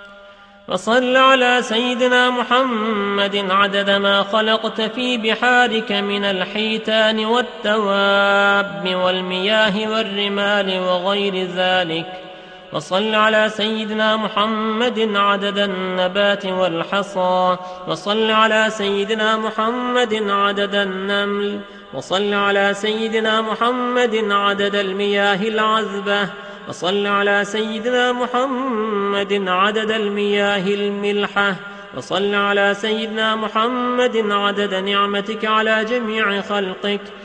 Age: 30-49